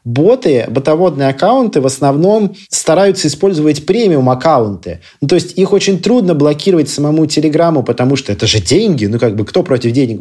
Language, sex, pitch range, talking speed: Russian, male, 130-175 Hz, 170 wpm